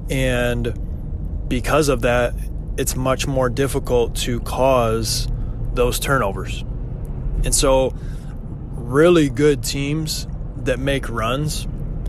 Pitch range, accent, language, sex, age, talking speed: 120-145 Hz, American, English, male, 20-39, 100 wpm